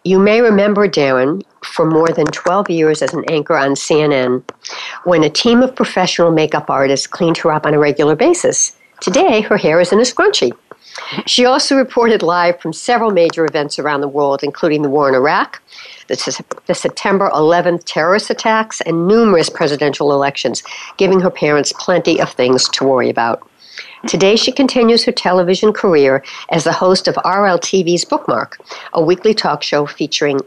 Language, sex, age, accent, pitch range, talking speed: English, female, 60-79, American, 145-205 Hz, 170 wpm